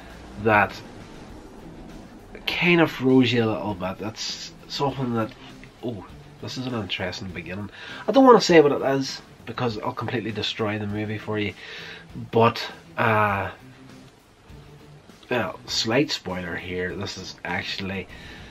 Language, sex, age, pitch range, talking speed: English, male, 30-49, 95-115 Hz, 135 wpm